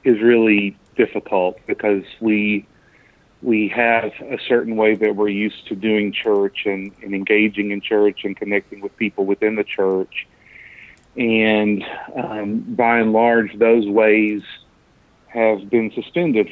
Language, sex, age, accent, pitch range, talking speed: English, male, 40-59, American, 105-115 Hz, 140 wpm